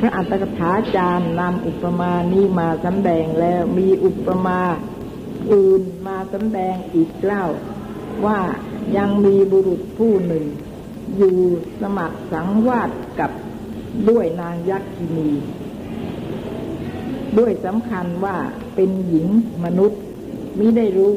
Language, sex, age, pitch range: Thai, female, 60-79, 170-205 Hz